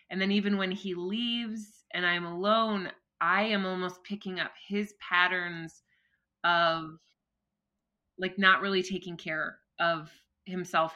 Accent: American